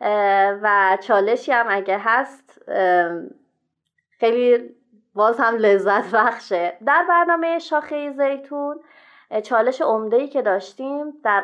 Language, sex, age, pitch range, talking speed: Persian, female, 30-49, 210-270 Hz, 100 wpm